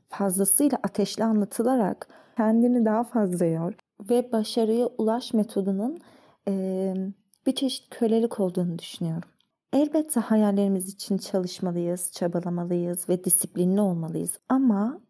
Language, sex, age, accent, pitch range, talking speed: Turkish, female, 30-49, native, 190-240 Hz, 105 wpm